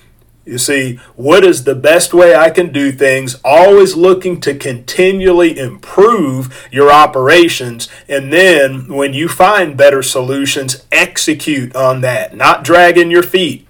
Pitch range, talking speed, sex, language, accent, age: 135-170 Hz, 140 wpm, male, English, American, 40-59